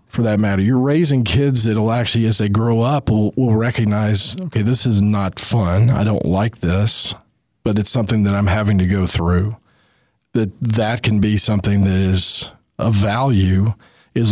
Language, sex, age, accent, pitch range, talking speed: English, male, 40-59, American, 100-125 Hz, 185 wpm